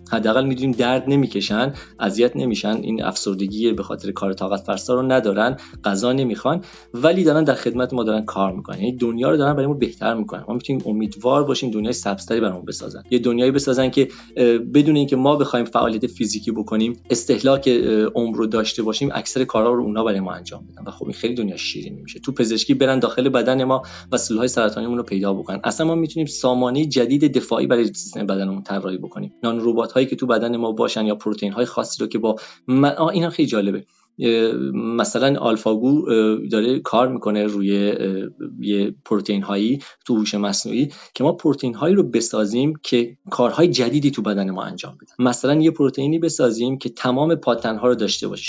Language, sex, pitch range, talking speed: Persian, male, 110-135 Hz, 185 wpm